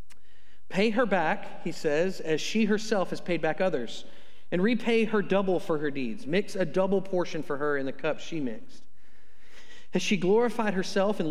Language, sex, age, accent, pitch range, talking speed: English, male, 40-59, American, 130-195 Hz, 185 wpm